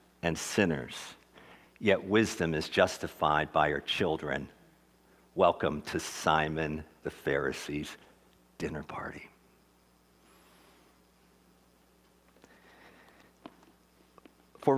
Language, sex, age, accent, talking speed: English, male, 50-69, American, 70 wpm